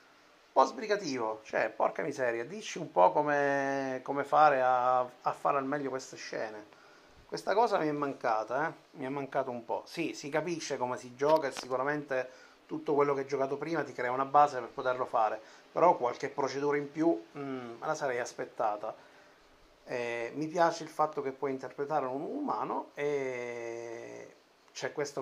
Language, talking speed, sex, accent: Italian, 175 wpm, male, native